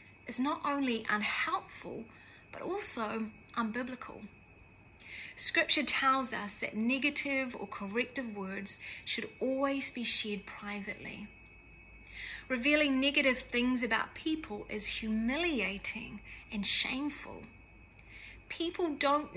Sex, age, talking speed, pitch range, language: female, 30-49, 95 wpm, 205-260 Hz, English